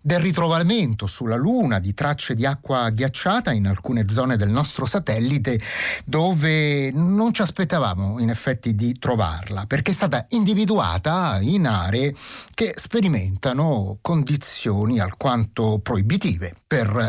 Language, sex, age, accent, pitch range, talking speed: Italian, male, 30-49, native, 110-180 Hz, 125 wpm